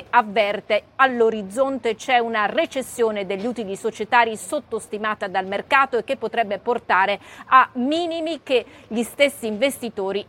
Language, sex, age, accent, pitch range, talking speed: Italian, female, 40-59, native, 210-255 Hz, 120 wpm